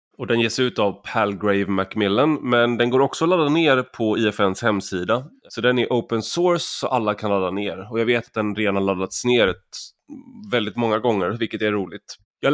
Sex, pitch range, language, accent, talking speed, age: male, 95-120 Hz, Swedish, native, 205 wpm, 20-39